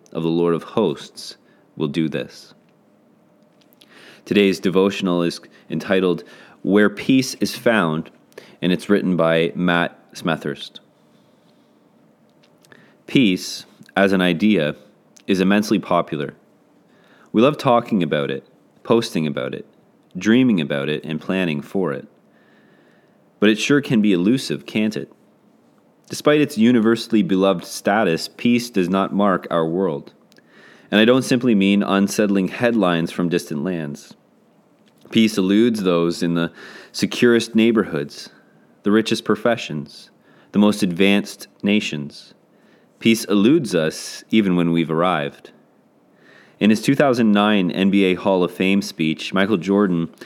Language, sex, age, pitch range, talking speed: English, male, 30-49, 85-110 Hz, 125 wpm